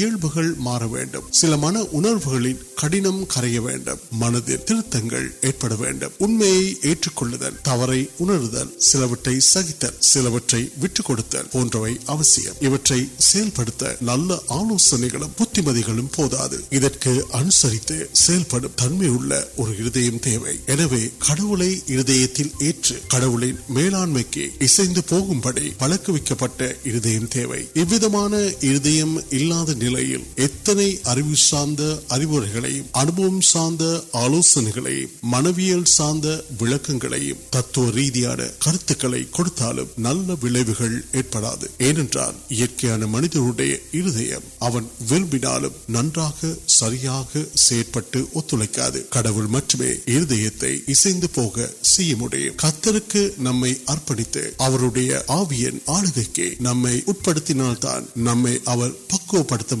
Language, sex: Urdu, male